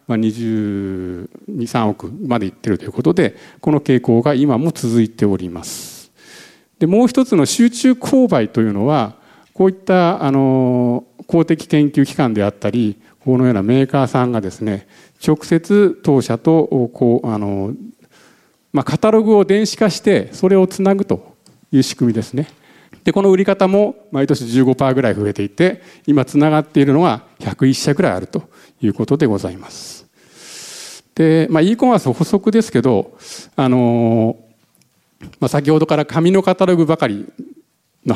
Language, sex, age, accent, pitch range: Japanese, male, 50-69, native, 115-185 Hz